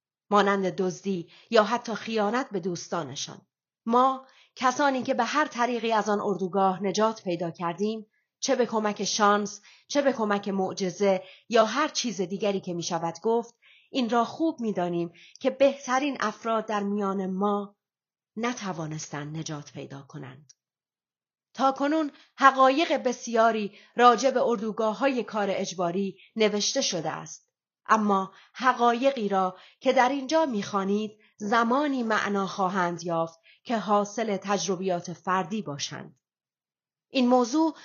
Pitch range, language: 190-250 Hz, Persian